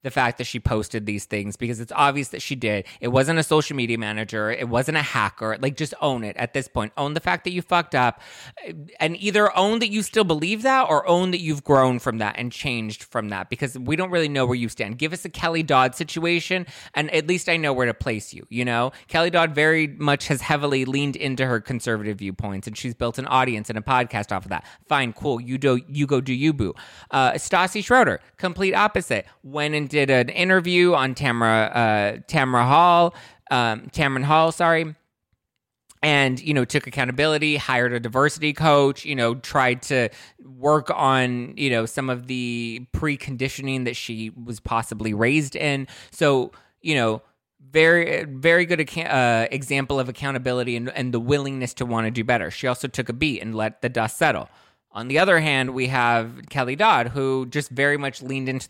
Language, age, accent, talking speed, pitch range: English, 20-39, American, 205 wpm, 120-150 Hz